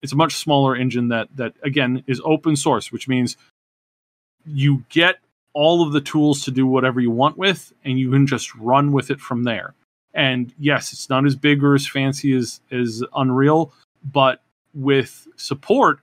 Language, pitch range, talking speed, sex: English, 130-150 Hz, 185 wpm, male